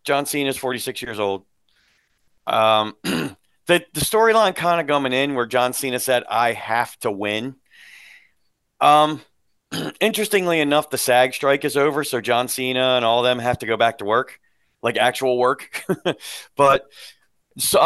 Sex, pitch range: male, 125-155 Hz